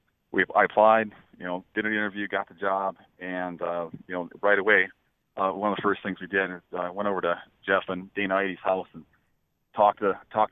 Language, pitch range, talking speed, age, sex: English, 90-100 Hz, 230 wpm, 30-49, male